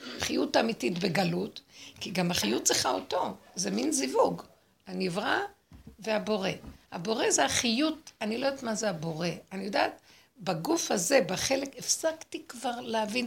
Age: 60-79